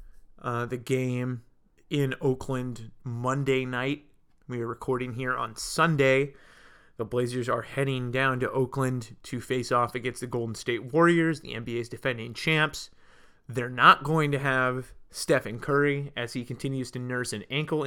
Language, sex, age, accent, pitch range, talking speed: English, male, 20-39, American, 125-145 Hz, 155 wpm